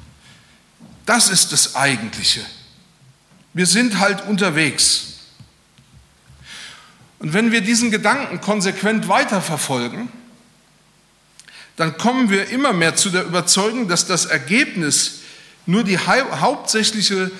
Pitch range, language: 165-220 Hz, German